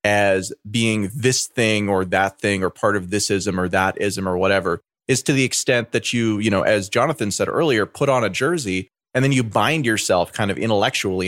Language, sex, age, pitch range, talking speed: English, male, 30-49, 95-120 Hz, 205 wpm